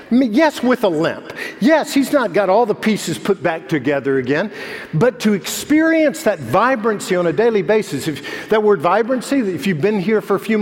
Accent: American